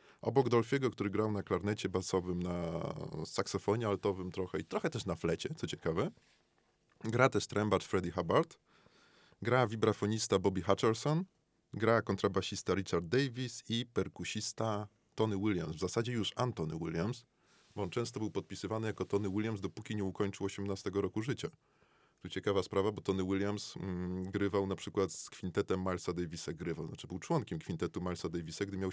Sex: male